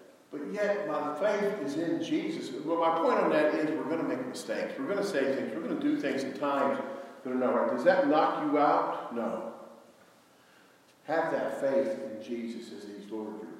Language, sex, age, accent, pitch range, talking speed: English, male, 50-69, American, 140-215 Hz, 210 wpm